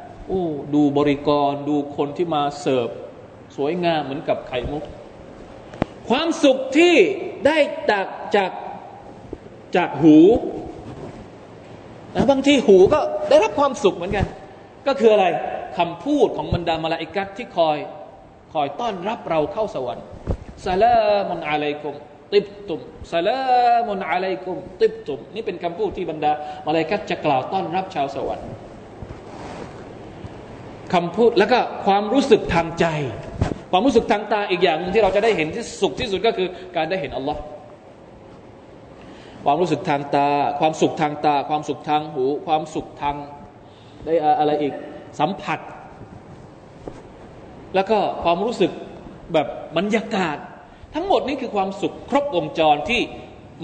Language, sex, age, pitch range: Thai, male, 20-39, 150-225 Hz